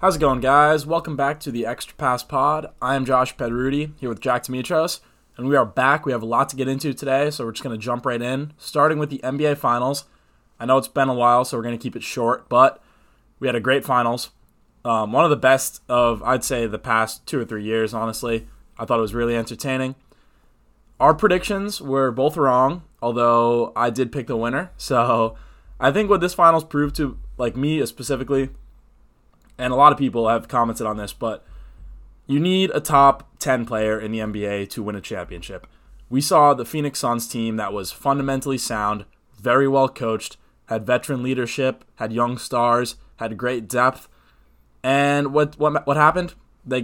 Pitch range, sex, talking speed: 115-140 Hz, male, 200 wpm